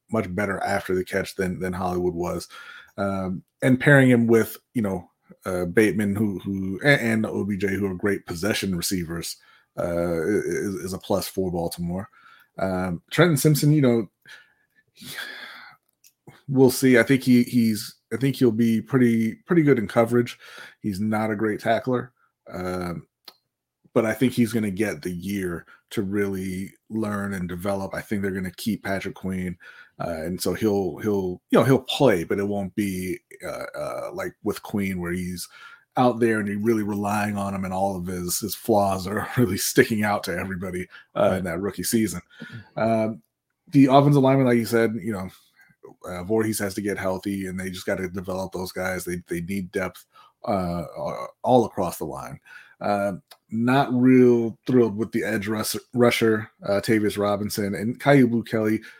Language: English